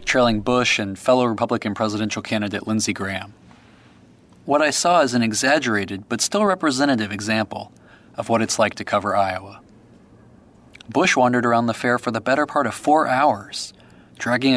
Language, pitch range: English, 100-125 Hz